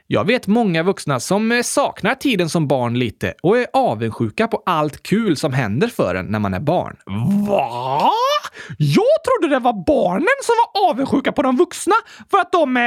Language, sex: Swedish, male